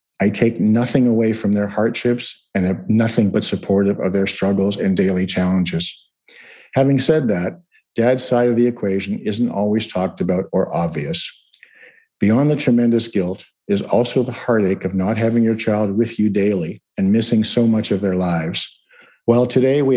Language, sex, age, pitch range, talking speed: English, male, 50-69, 100-120 Hz, 175 wpm